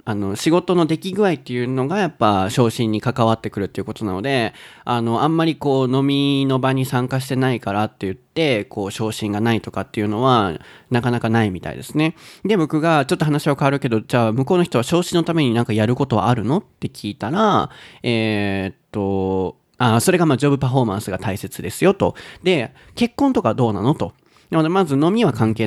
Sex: male